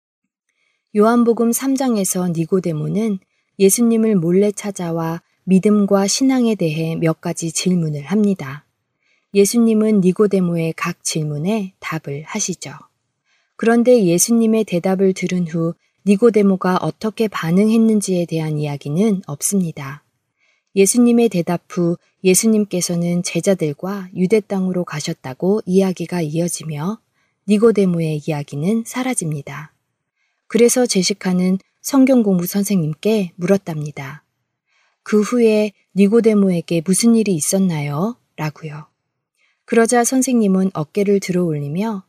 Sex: female